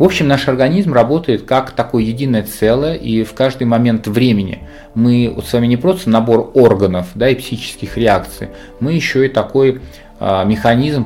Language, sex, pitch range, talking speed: Russian, male, 100-125 Hz, 175 wpm